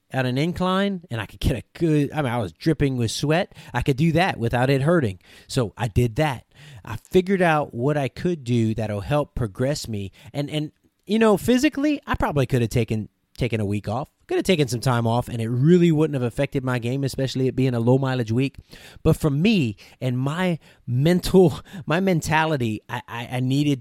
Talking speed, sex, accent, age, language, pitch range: 215 wpm, male, American, 30-49, English, 120-160 Hz